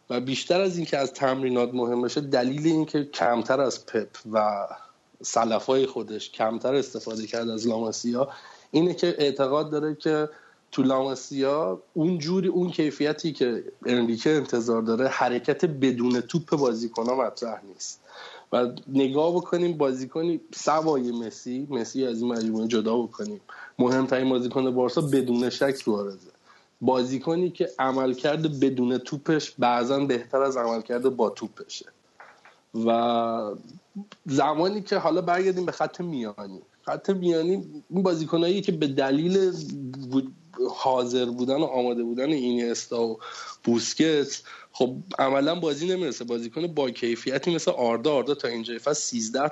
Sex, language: male, Persian